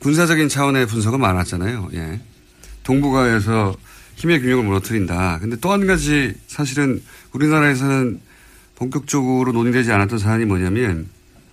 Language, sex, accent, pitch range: Korean, male, native, 110-155 Hz